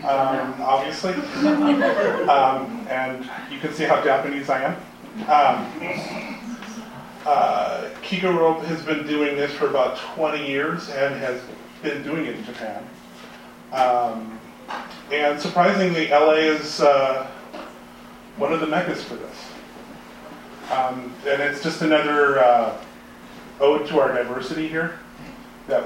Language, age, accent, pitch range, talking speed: English, 30-49, American, 125-165 Hz, 125 wpm